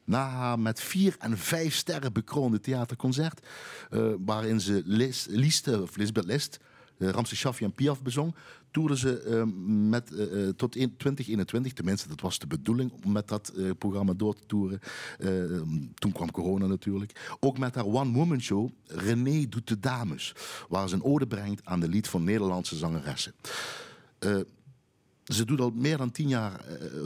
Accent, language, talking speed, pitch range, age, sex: Dutch, Dutch, 155 wpm, 100-130 Hz, 50-69, male